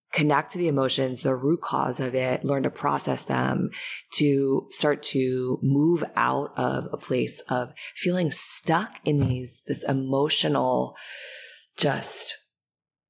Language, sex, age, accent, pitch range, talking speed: English, female, 20-39, American, 130-155 Hz, 135 wpm